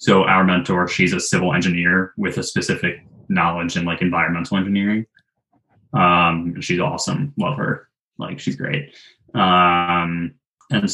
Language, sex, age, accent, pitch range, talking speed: English, male, 20-39, American, 85-110 Hz, 135 wpm